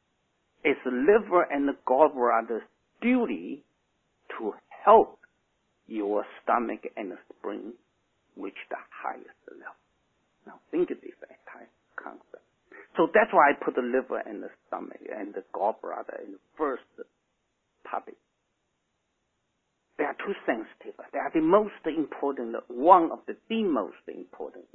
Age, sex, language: 60-79, male, English